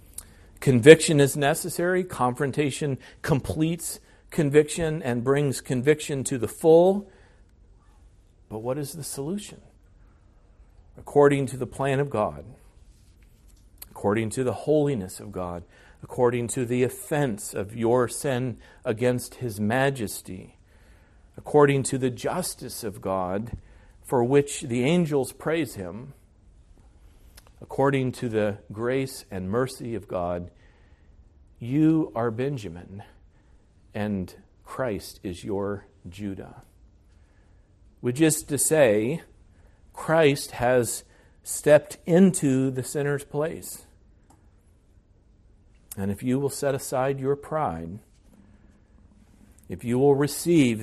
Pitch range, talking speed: 95-140 Hz, 105 wpm